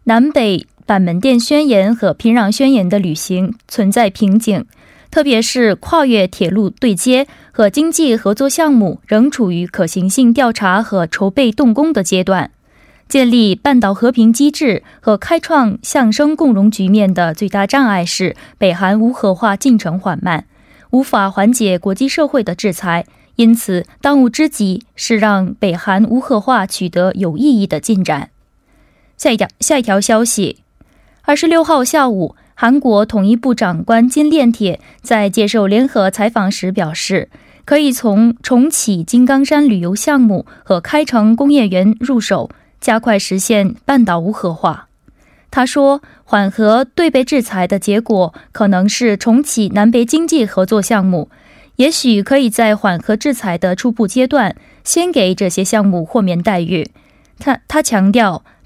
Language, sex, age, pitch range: Korean, female, 20-39, 195-260 Hz